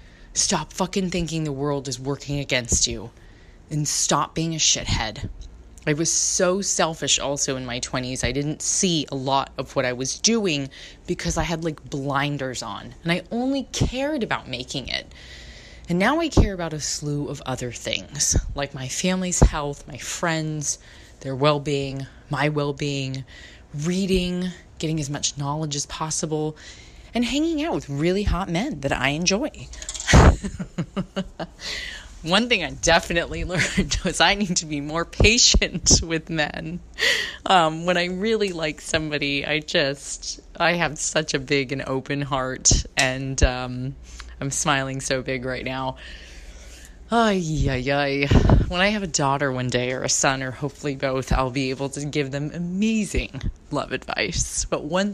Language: English